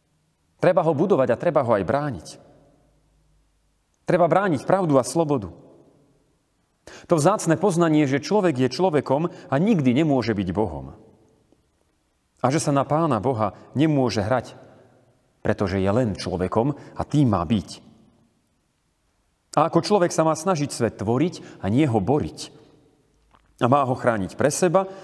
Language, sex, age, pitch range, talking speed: Slovak, male, 40-59, 100-160 Hz, 140 wpm